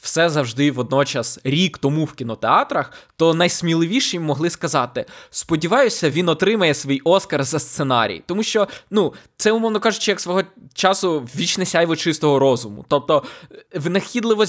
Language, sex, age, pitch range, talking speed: Ukrainian, male, 20-39, 130-170 Hz, 135 wpm